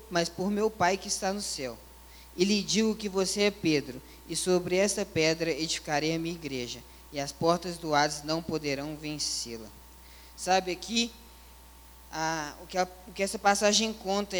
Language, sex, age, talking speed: Portuguese, female, 20-39, 165 wpm